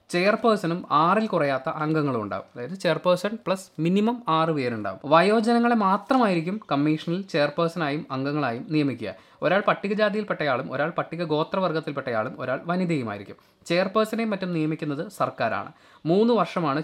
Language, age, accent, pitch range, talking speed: Malayalam, 20-39, native, 130-185 Hz, 105 wpm